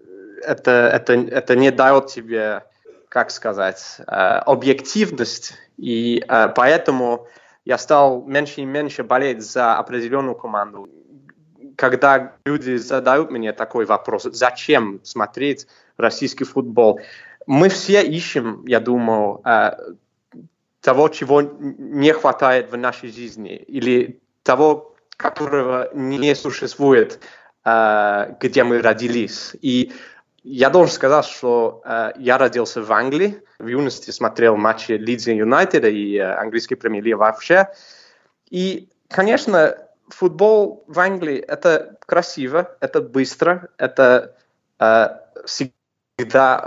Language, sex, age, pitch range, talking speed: Russian, male, 20-39, 120-175 Hz, 105 wpm